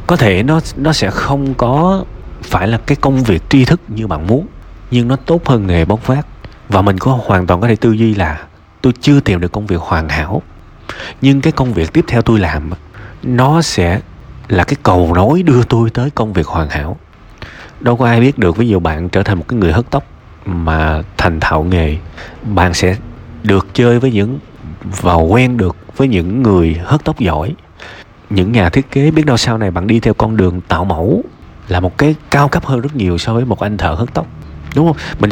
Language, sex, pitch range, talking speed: Vietnamese, male, 90-125 Hz, 220 wpm